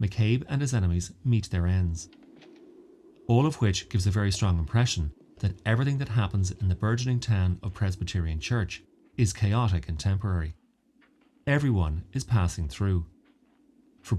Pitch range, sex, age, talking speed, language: 95-125 Hz, male, 30-49, 150 wpm, English